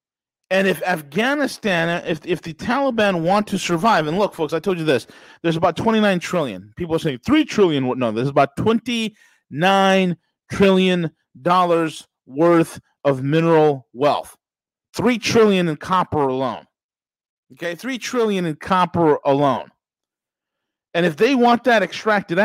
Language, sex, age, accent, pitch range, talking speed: English, male, 40-59, American, 160-205 Hz, 145 wpm